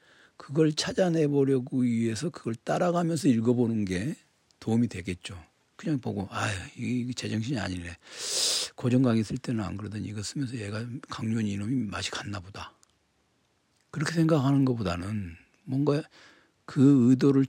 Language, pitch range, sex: Korean, 100-145 Hz, male